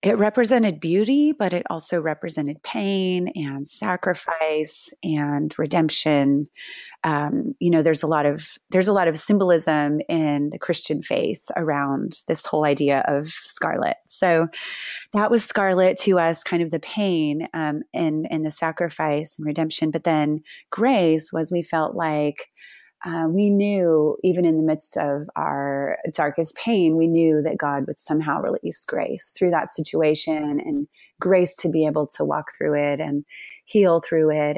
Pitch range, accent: 150-190 Hz, American